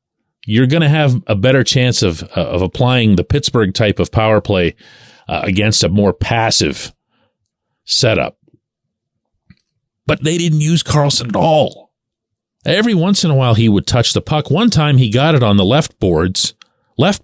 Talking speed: 175 wpm